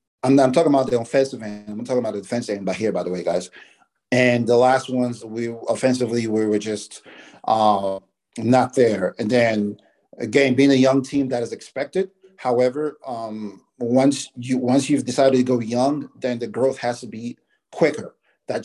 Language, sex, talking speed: English, male, 195 wpm